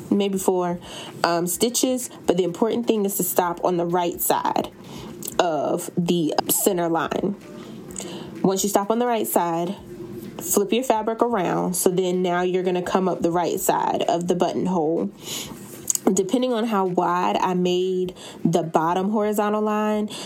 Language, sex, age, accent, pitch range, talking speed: English, female, 20-39, American, 175-200 Hz, 155 wpm